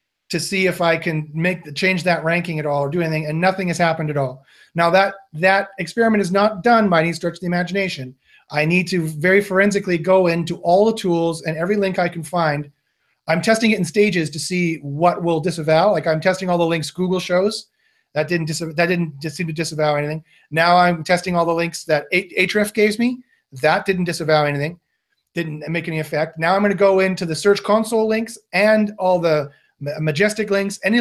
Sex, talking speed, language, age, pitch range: male, 215 wpm, English, 30-49, 160-200 Hz